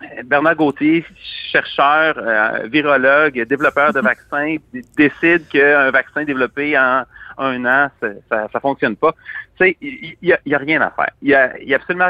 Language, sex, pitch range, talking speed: French, male, 140-190 Hz, 175 wpm